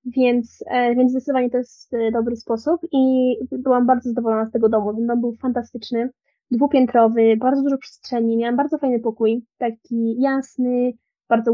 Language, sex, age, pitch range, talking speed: Polish, female, 20-39, 230-255 Hz, 150 wpm